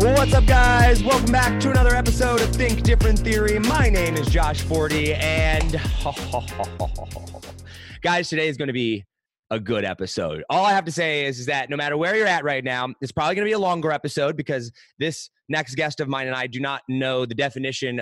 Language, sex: English, male